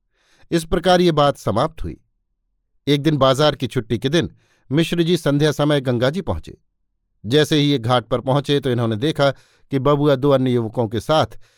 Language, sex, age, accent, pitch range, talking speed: Hindi, male, 50-69, native, 120-160 Hz, 180 wpm